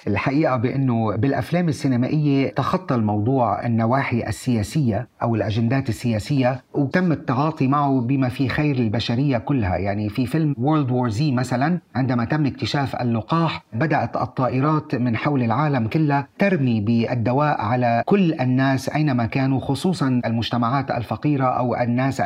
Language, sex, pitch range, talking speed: Arabic, male, 120-150 Hz, 130 wpm